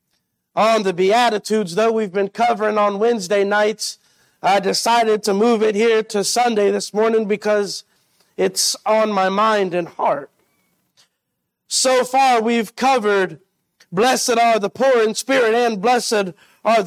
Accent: American